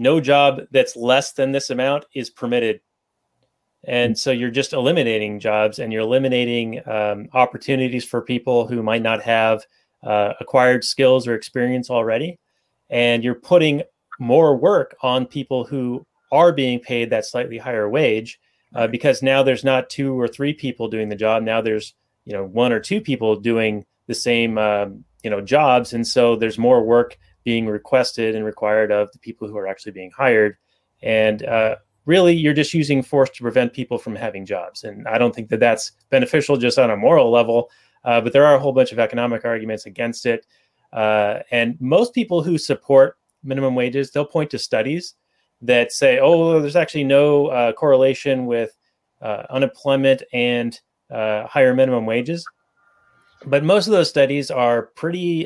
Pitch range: 115-140 Hz